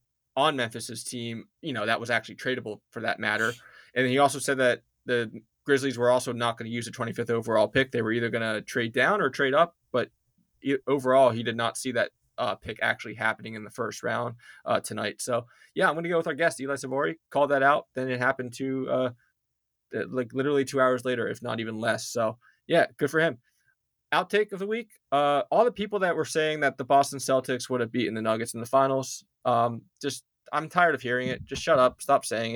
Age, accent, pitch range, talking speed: 20-39, American, 120-140 Hz, 225 wpm